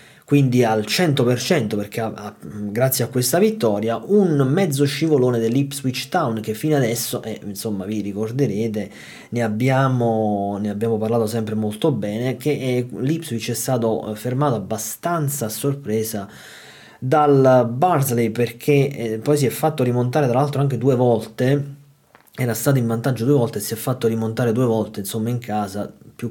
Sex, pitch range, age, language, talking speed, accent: male, 110-135 Hz, 20-39, Italian, 155 wpm, native